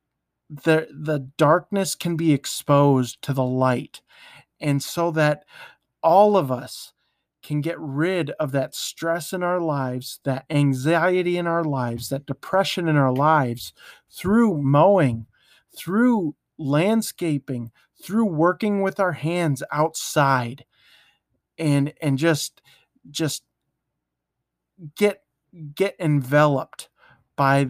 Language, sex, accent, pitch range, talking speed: English, male, American, 135-170 Hz, 115 wpm